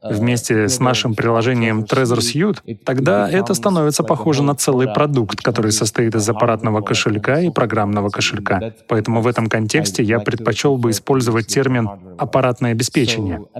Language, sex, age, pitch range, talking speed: Russian, male, 20-39, 115-140 Hz, 140 wpm